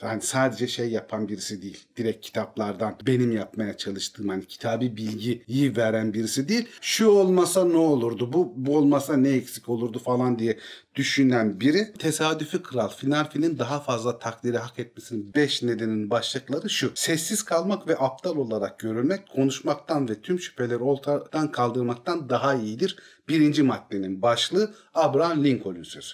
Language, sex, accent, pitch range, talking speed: Turkish, male, native, 115-160 Hz, 140 wpm